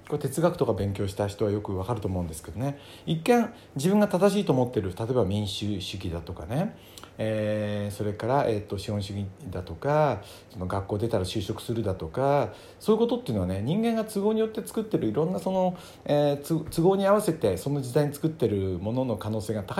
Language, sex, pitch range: Japanese, male, 100-155 Hz